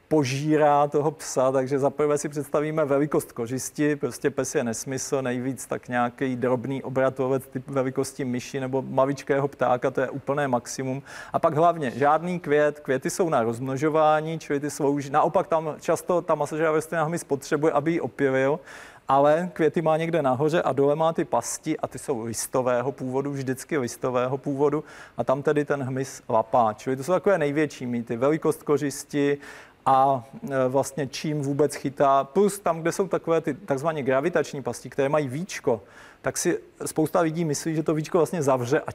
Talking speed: 170 wpm